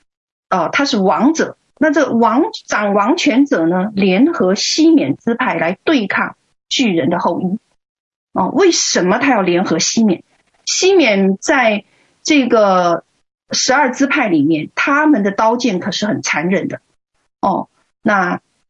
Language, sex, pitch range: Chinese, female, 205-295 Hz